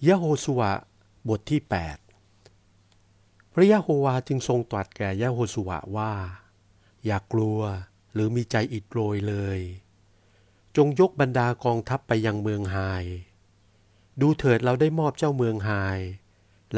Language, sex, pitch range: Thai, male, 100-120 Hz